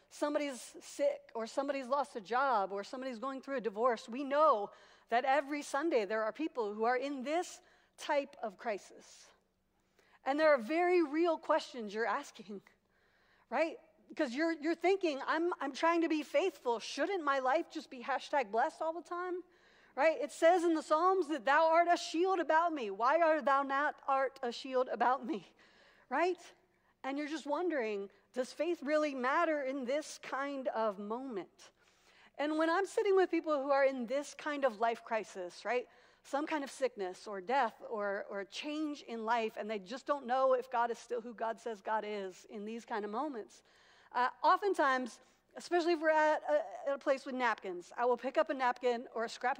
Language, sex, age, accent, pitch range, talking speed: English, female, 50-69, American, 240-315 Hz, 190 wpm